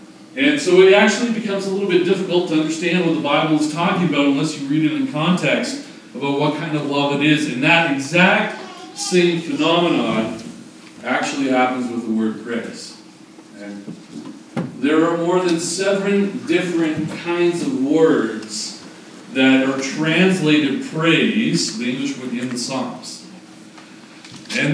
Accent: American